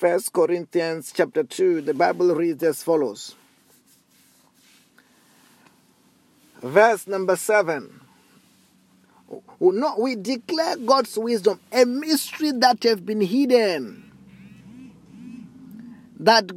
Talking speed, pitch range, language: 85 wpm, 185-245 Hz, English